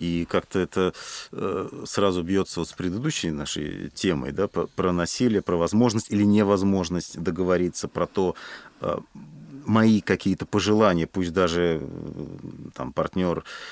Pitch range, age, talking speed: 85-110 Hz, 40-59, 105 wpm